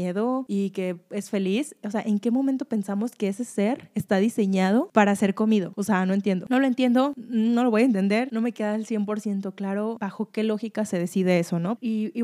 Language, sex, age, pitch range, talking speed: Spanish, female, 20-39, 190-220 Hz, 220 wpm